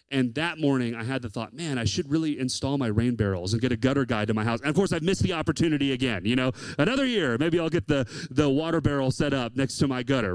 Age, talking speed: 30-49, 280 wpm